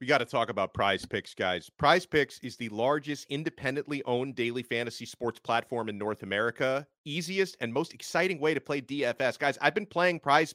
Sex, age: male, 30-49